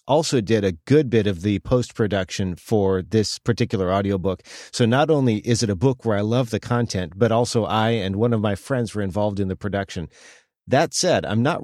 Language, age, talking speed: English, 40-59, 210 wpm